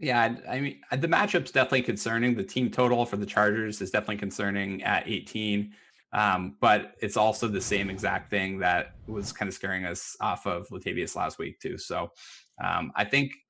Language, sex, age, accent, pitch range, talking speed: English, male, 20-39, American, 95-110 Hz, 185 wpm